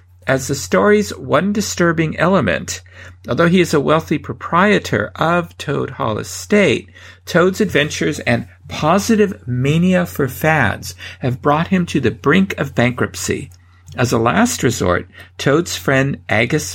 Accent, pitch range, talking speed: American, 110-155 Hz, 135 wpm